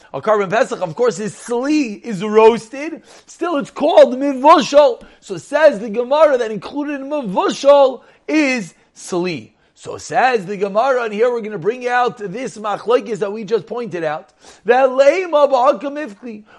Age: 40-59